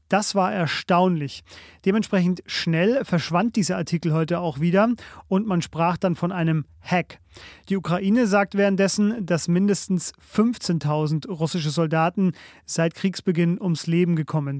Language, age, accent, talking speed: German, 40-59, German, 130 wpm